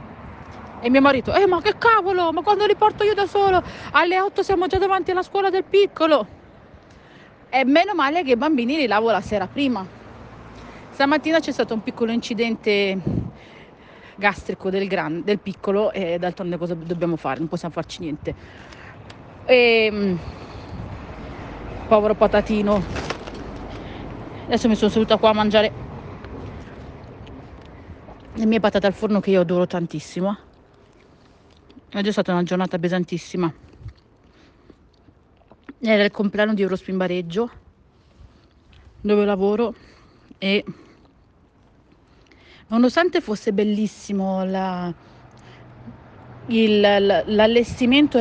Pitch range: 185-245 Hz